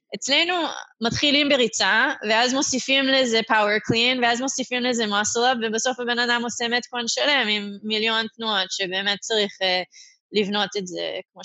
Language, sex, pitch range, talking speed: Hebrew, female, 205-255 Hz, 145 wpm